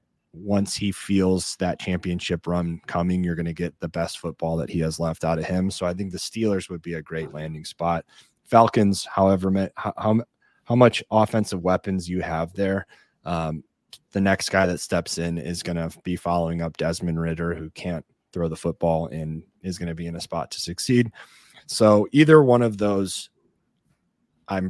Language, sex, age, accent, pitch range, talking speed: English, male, 30-49, American, 85-100 Hz, 190 wpm